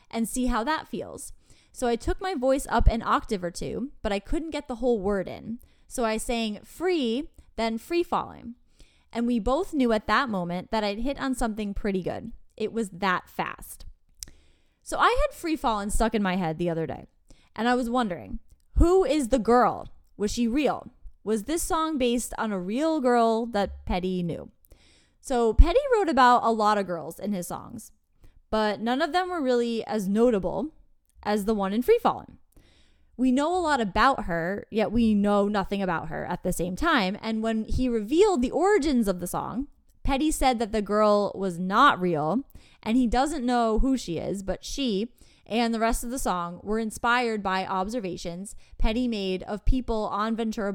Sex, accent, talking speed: female, American, 195 wpm